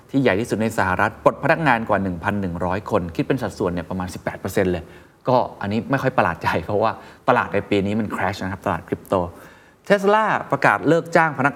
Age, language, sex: 20-39, Thai, male